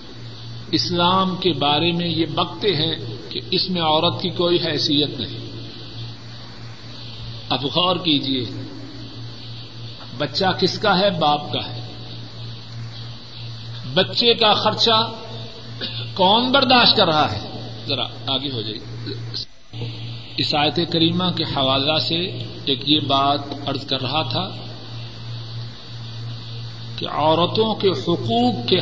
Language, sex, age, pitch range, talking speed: Urdu, male, 50-69, 115-170 Hz, 110 wpm